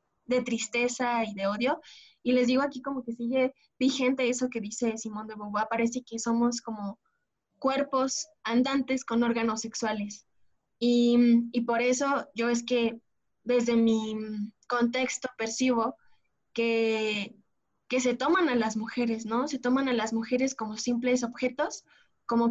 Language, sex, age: Spanish, female, 20-39